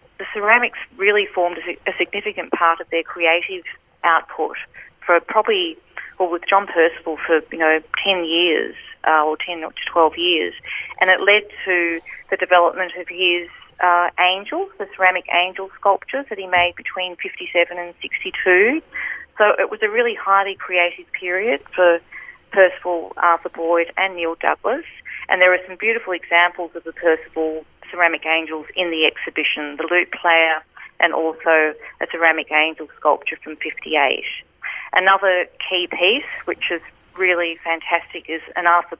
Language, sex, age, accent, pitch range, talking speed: English, female, 30-49, Australian, 160-185 Hz, 155 wpm